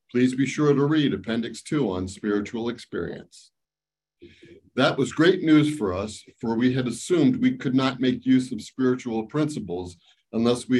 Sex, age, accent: male, 50-69, American